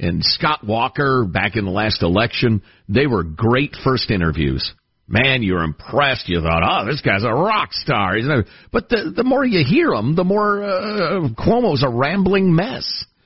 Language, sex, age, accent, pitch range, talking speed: English, male, 50-69, American, 105-175 Hz, 170 wpm